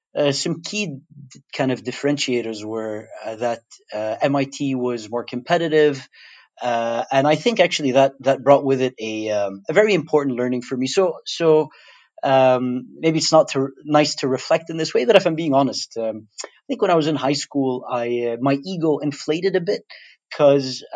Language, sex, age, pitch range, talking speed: English, male, 30-49, 125-150 Hz, 200 wpm